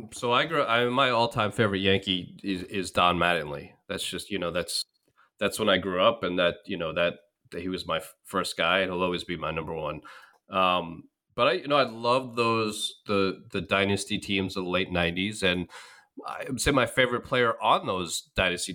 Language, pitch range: English, 90-110 Hz